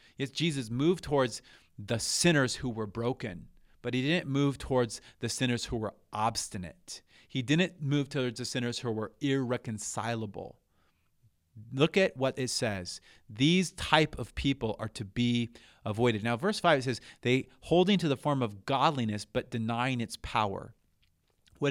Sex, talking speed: male, 160 wpm